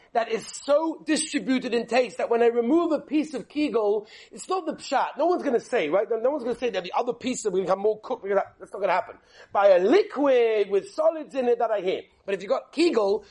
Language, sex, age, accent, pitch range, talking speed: English, male, 40-59, British, 210-285 Hz, 250 wpm